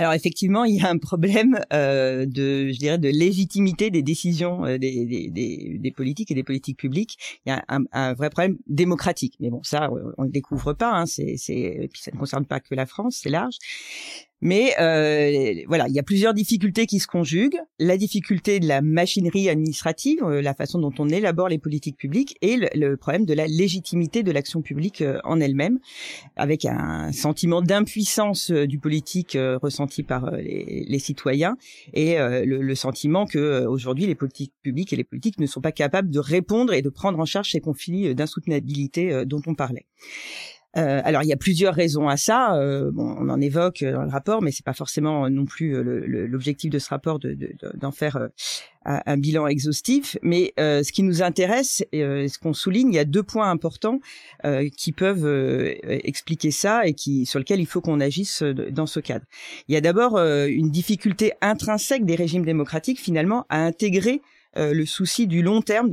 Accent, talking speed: French, 200 wpm